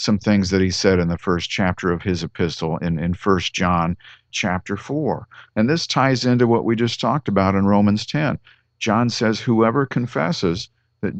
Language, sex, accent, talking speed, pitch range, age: English, male, American, 190 wpm, 100-135 Hz, 50-69